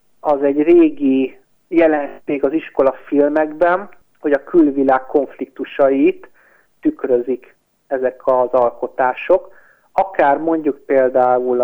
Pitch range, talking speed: 130-160 Hz, 95 wpm